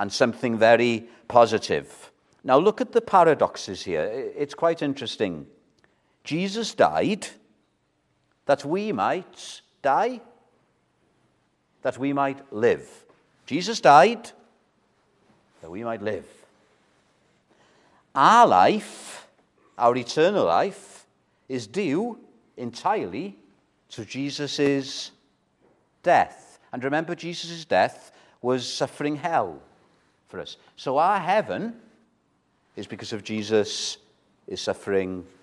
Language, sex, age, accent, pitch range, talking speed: English, male, 60-79, British, 120-190 Hz, 100 wpm